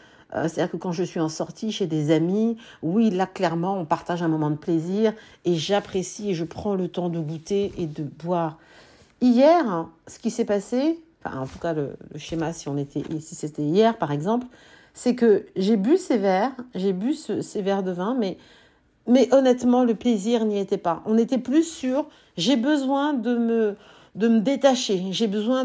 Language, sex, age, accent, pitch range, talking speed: French, female, 50-69, French, 190-255 Hz, 190 wpm